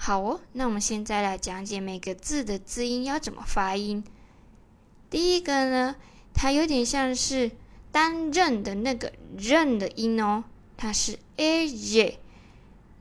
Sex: female